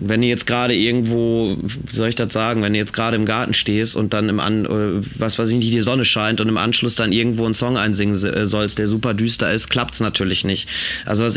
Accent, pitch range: German, 105-120 Hz